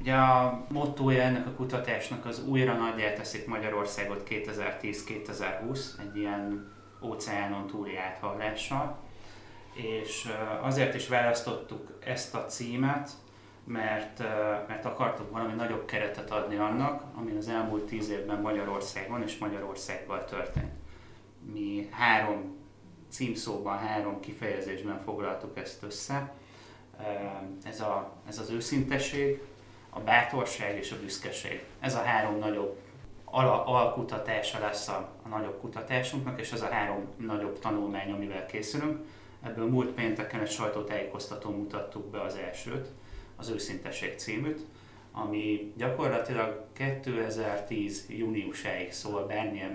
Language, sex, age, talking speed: Hungarian, male, 30-49, 115 wpm